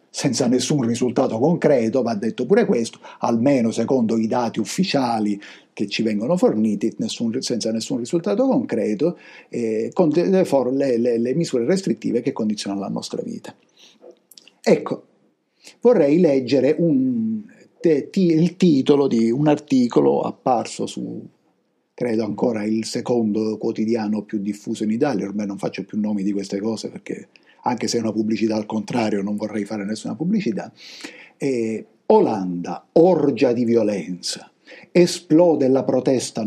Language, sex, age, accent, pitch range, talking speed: Italian, male, 50-69, native, 115-155 Hz, 140 wpm